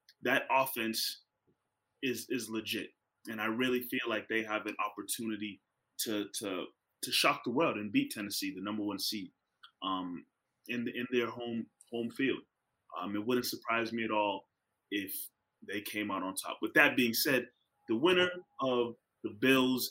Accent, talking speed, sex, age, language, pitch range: American, 170 wpm, male, 30-49, English, 110-135 Hz